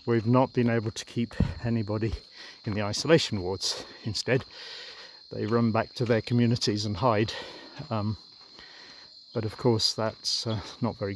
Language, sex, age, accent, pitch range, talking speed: English, male, 40-59, British, 105-125 Hz, 150 wpm